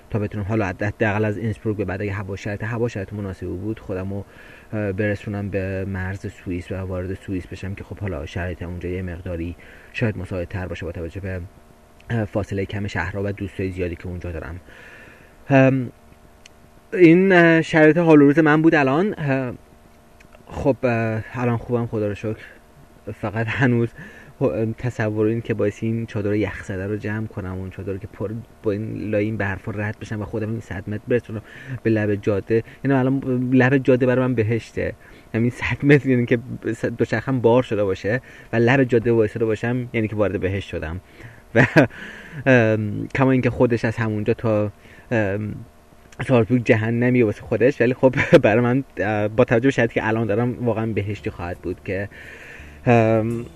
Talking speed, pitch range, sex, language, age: 160 wpm, 95-120 Hz, male, Persian, 30-49